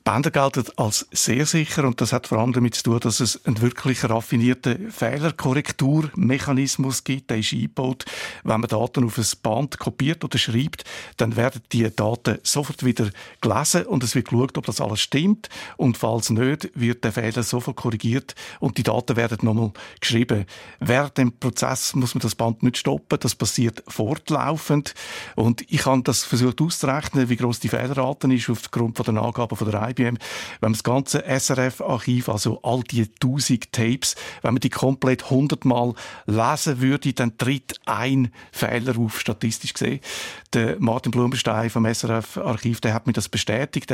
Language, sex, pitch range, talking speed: German, male, 115-135 Hz, 170 wpm